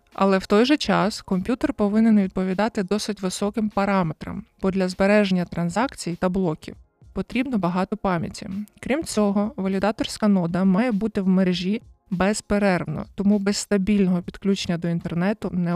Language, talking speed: Ukrainian, 135 wpm